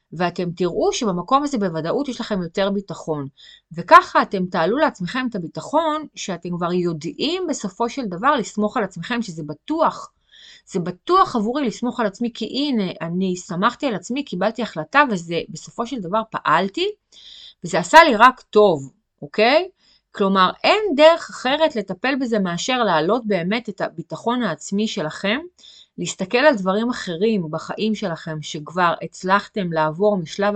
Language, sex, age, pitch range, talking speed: Hebrew, female, 30-49, 165-240 Hz, 145 wpm